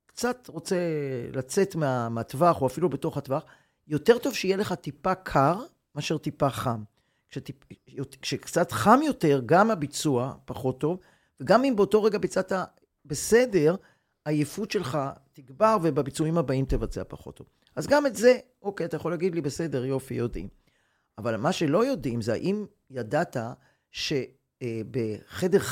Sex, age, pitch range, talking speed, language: male, 40-59, 130-190 Hz, 140 wpm, Hebrew